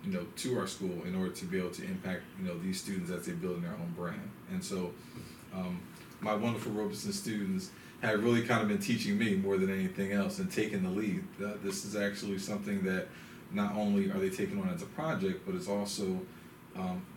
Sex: male